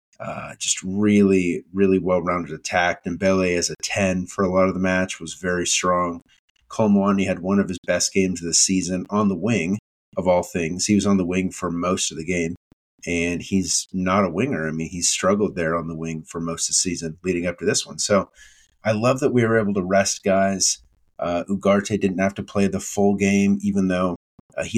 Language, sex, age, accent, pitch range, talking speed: English, male, 30-49, American, 90-100 Hz, 220 wpm